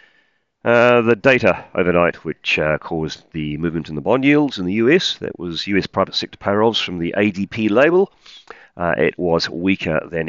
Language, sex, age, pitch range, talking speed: English, male, 40-59, 80-100 Hz, 180 wpm